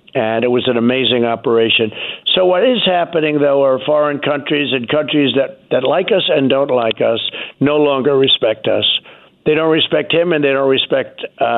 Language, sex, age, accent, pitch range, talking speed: English, male, 60-79, American, 125-145 Hz, 190 wpm